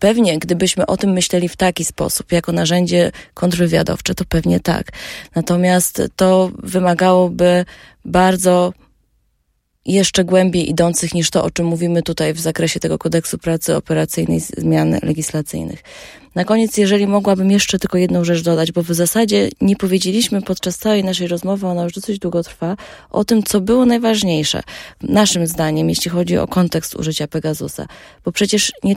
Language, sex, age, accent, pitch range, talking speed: Polish, female, 20-39, native, 165-195 Hz, 155 wpm